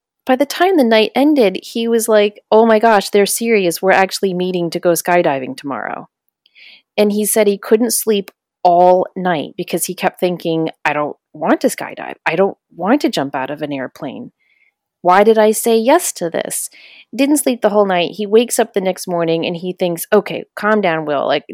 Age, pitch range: 30-49, 165-215 Hz